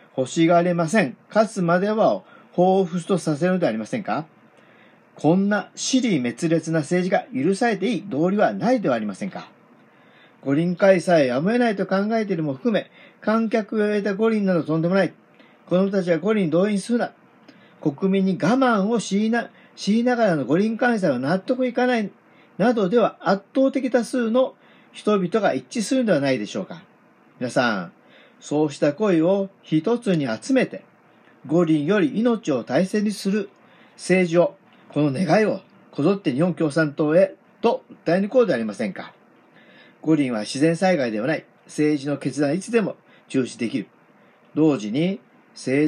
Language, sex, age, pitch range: Japanese, male, 40-59, 165-225 Hz